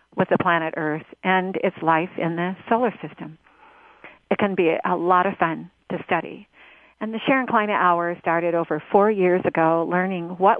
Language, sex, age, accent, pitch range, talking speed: English, female, 50-69, American, 170-200 Hz, 180 wpm